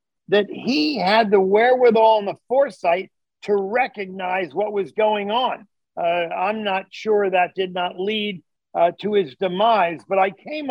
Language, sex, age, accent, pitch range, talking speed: English, male, 50-69, American, 185-230 Hz, 165 wpm